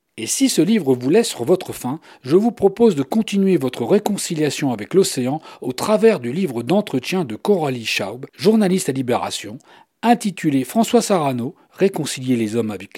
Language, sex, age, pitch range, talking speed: French, male, 40-59, 125-195 Hz, 170 wpm